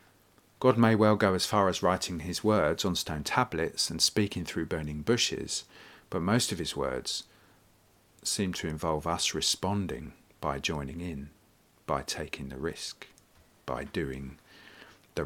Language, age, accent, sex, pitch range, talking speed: English, 40-59, British, male, 80-105 Hz, 150 wpm